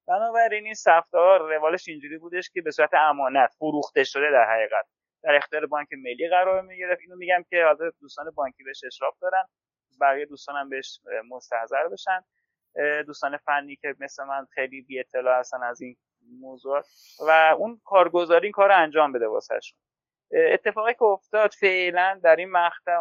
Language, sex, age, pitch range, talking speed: Persian, male, 30-49, 135-180 Hz, 165 wpm